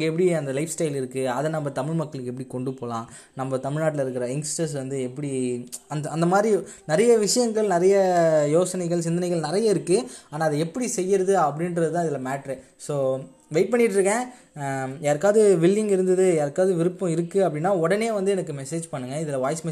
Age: 20-39